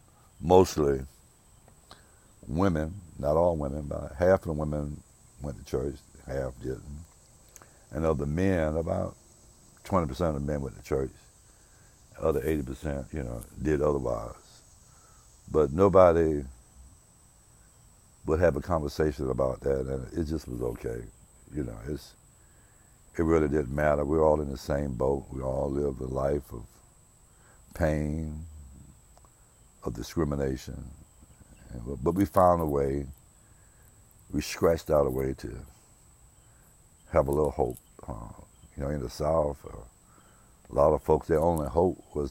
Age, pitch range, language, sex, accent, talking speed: 60-79, 70-80 Hz, English, male, American, 140 wpm